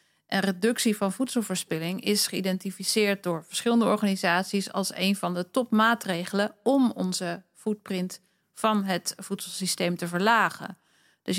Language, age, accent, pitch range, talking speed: Dutch, 40-59, Dutch, 185-220 Hz, 115 wpm